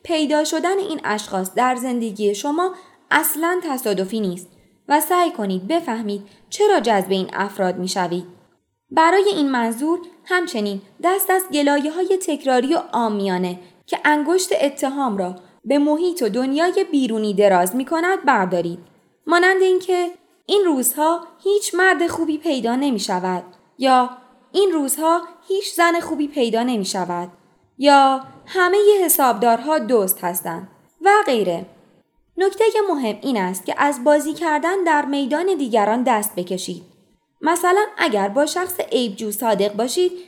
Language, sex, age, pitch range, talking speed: Persian, female, 20-39, 210-340 Hz, 135 wpm